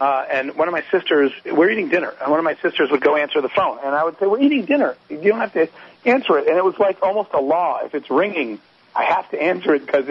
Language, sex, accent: English, male, American